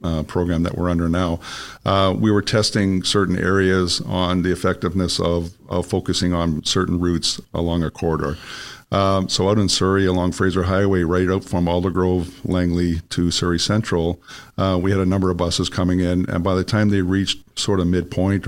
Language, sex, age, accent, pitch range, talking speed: English, male, 50-69, American, 85-95 Hz, 190 wpm